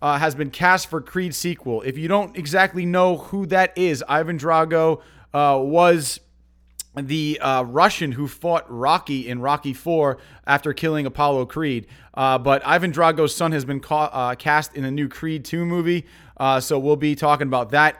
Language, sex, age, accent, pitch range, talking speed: English, male, 30-49, American, 135-175 Hz, 180 wpm